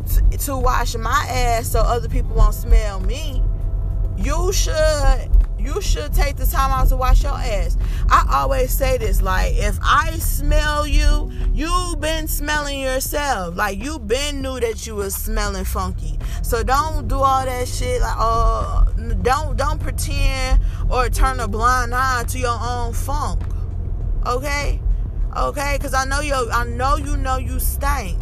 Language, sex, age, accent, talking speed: English, female, 20-39, American, 165 wpm